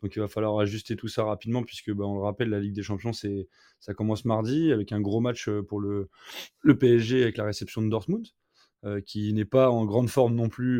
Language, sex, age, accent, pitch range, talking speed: French, male, 20-39, French, 105-120 Hz, 240 wpm